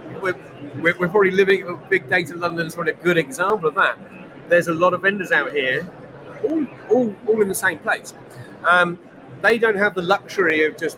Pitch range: 155-190 Hz